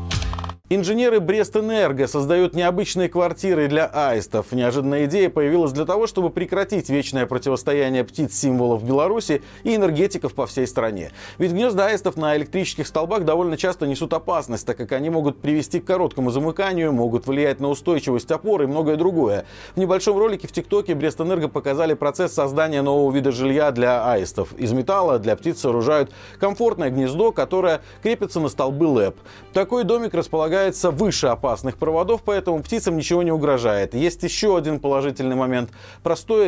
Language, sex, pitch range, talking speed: Russian, male, 135-185 Hz, 150 wpm